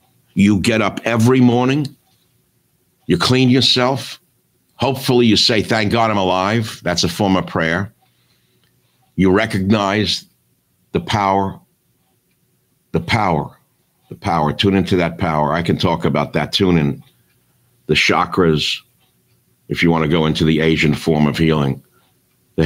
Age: 60-79